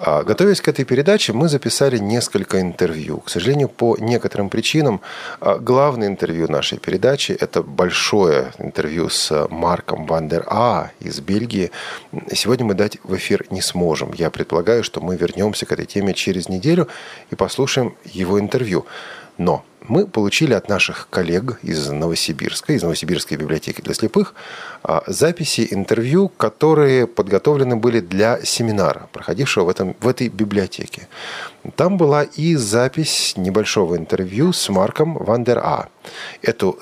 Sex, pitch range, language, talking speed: male, 95-145 Hz, Russian, 140 wpm